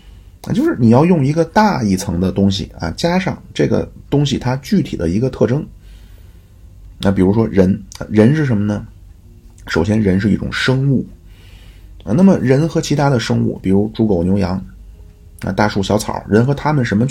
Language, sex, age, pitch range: Chinese, male, 30-49, 90-110 Hz